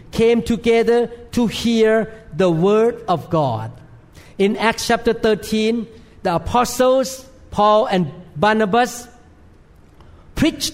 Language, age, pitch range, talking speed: English, 50-69, 165-245 Hz, 100 wpm